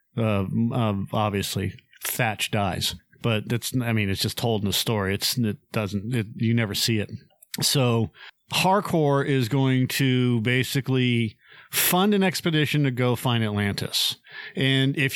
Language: English